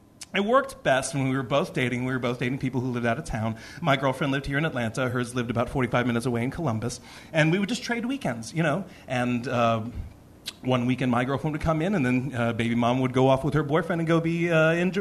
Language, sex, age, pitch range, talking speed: English, male, 40-59, 125-190 Hz, 260 wpm